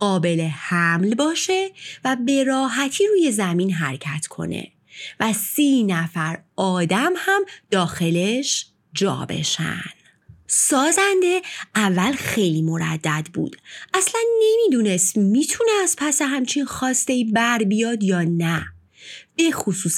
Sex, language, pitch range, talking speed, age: female, Persian, 170-280 Hz, 110 wpm, 30-49